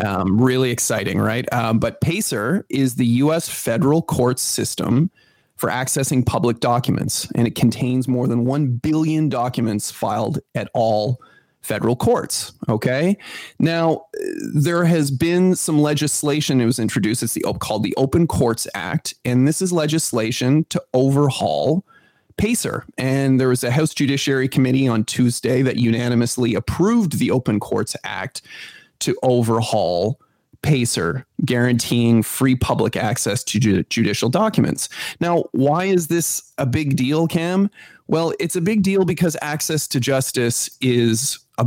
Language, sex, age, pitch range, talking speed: English, male, 30-49, 120-155 Hz, 145 wpm